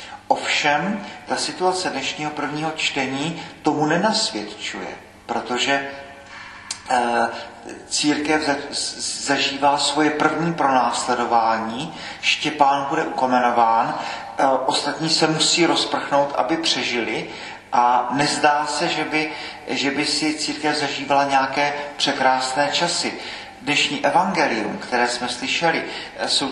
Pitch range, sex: 130-150 Hz, male